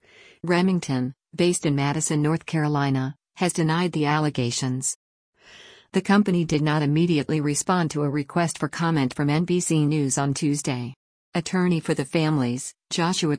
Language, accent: English, American